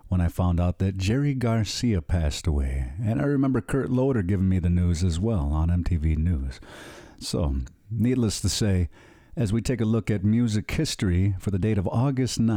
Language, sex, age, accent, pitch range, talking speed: English, male, 50-69, American, 90-125 Hz, 190 wpm